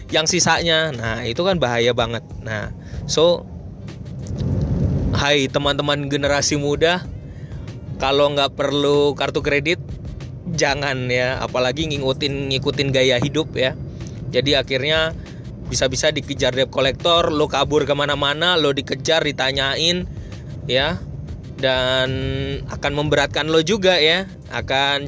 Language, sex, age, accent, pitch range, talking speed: Indonesian, male, 20-39, native, 125-145 Hz, 110 wpm